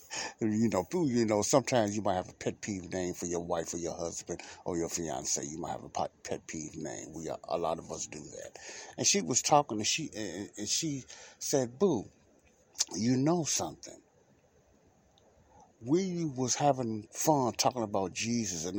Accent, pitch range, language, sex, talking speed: American, 85-110 Hz, English, male, 185 wpm